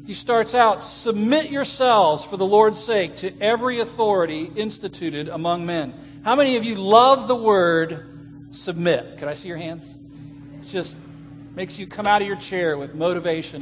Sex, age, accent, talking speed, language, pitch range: male, 50-69, American, 170 wpm, English, 145-230 Hz